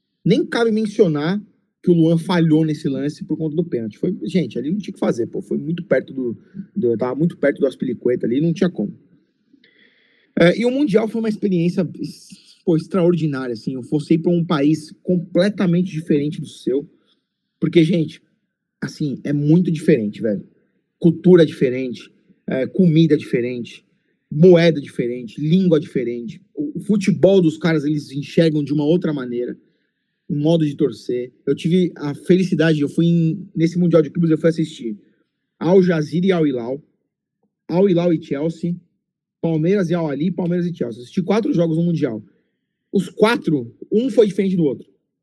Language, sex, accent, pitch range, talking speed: Portuguese, male, Brazilian, 150-185 Hz, 175 wpm